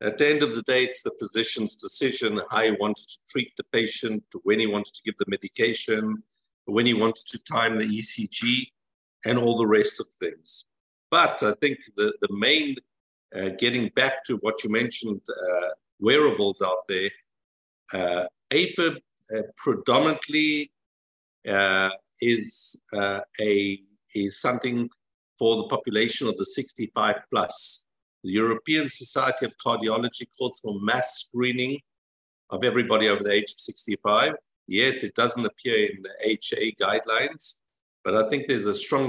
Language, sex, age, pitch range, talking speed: English, male, 50-69, 95-125 Hz, 155 wpm